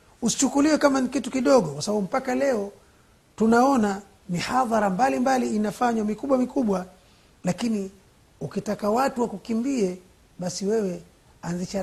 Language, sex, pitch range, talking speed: Swahili, male, 165-220 Hz, 115 wpm